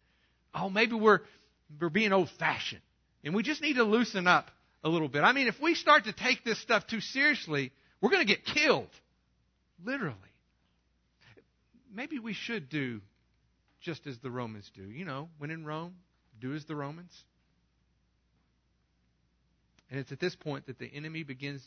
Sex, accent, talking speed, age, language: male, American, 165 wpm, 50-69, English